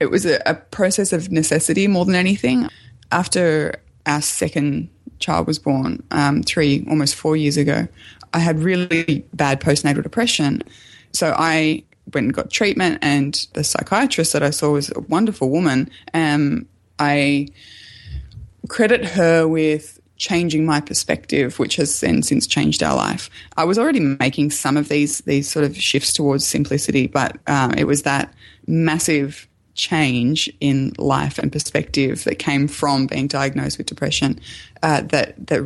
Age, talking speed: 20-39, 155 wpm